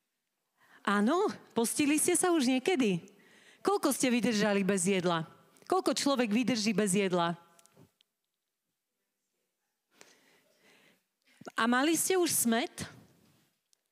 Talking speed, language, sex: 90 wpm, Slovak, female